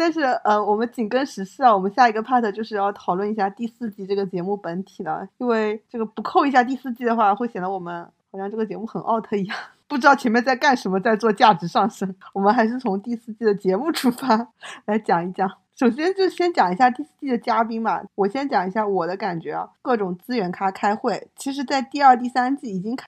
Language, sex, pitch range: Chinese, female, 195-240 Hz